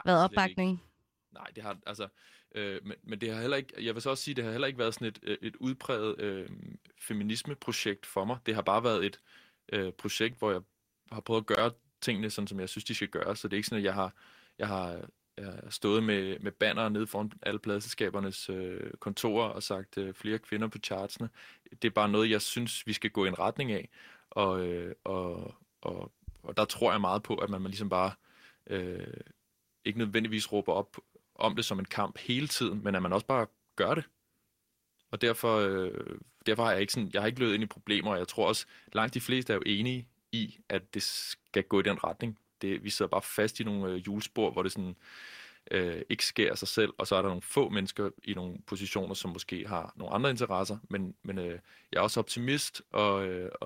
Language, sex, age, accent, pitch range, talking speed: Danish, male, 20-39, native, 95-115 Hz, 230 wpm